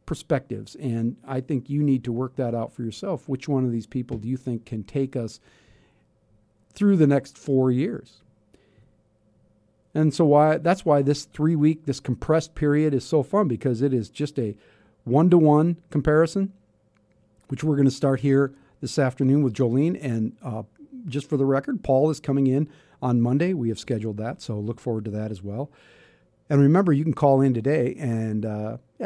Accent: American